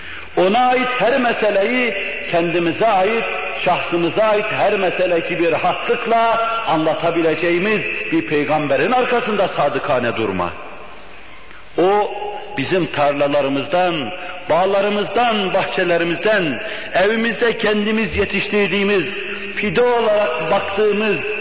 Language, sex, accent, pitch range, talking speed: Turkish, male, native, 165-225 Hz, 80 wpm